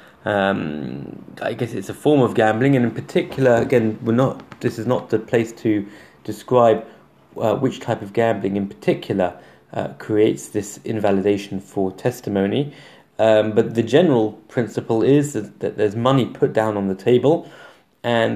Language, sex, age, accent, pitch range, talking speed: English, male, 30-49, British, 105-130 Hz, 165 wpm